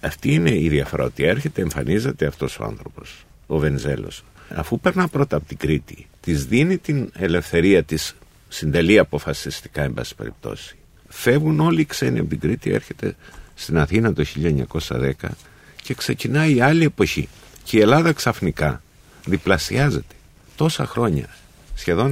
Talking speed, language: 145 wpm, Greek